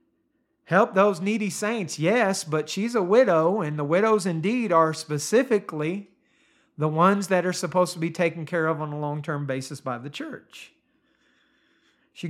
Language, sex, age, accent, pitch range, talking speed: English, male, 40-59, American, 155-195 Hz, 160 wpm